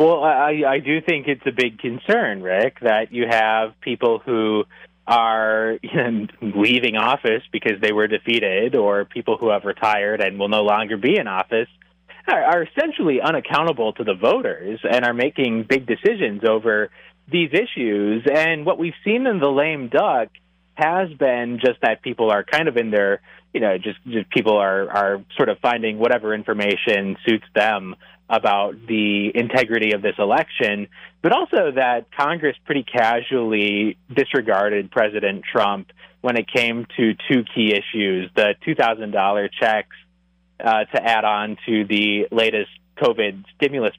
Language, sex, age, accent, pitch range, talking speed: English, male, 30-49, American, 105-135 Hz, 155 wpm